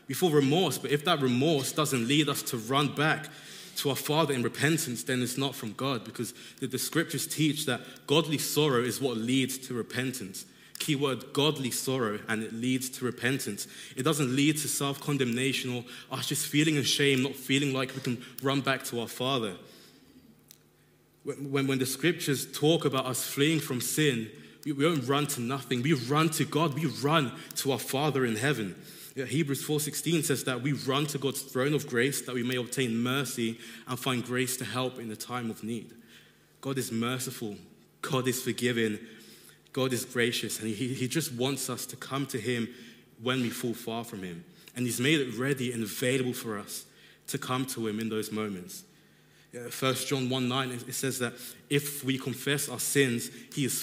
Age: 20-39